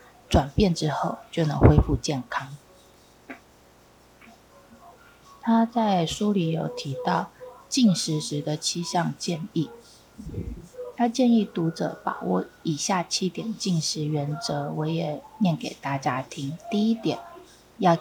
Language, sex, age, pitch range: Chinese, female, 20-39, 145-200 Hz